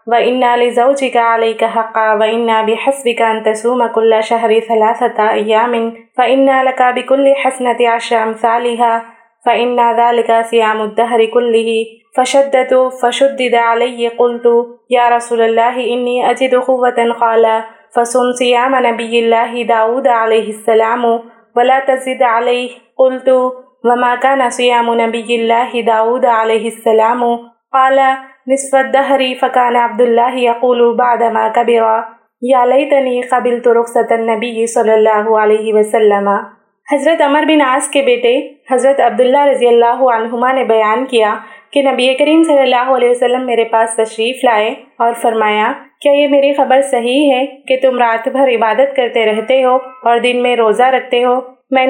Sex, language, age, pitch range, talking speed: female, Urdu, 20-39, 230-260 Hz, 140 wpm